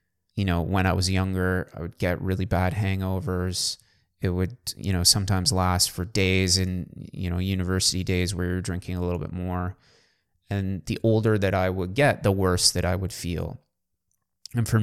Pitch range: 90-100 Hz